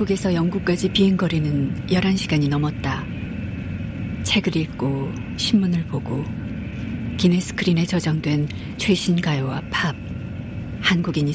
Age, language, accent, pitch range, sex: 40-59, Korean, native, 135-175 Hz, female